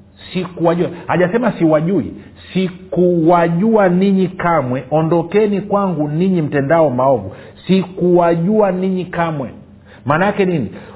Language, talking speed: Swahili, 90 wpm